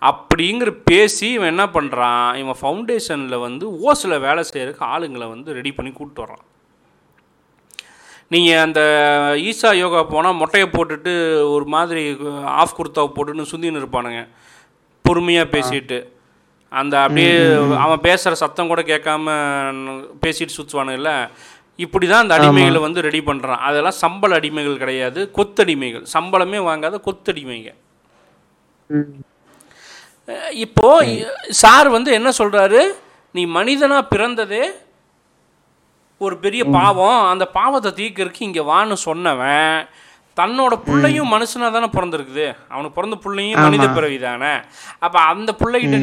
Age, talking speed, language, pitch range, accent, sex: 30-49, 115 wpm, Tamil, 140-190 Hz, native, male